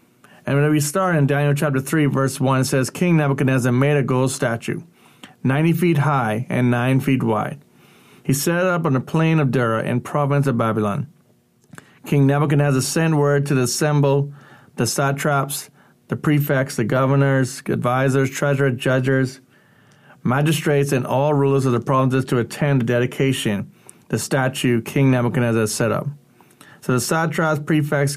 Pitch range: 125-150 Hz